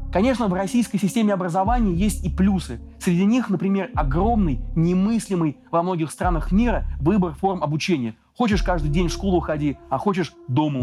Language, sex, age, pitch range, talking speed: Russian, male, 30-49, 155-200 Hz, 160 wpm